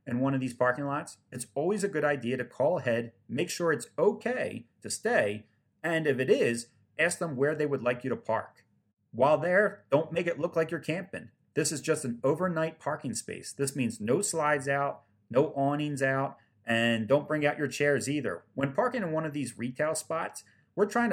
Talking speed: 210 wpm